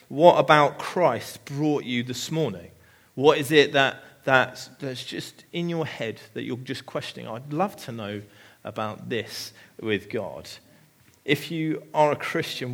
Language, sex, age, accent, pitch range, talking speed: English, male, 30-49, British, 135-160 Hz, 160 wpm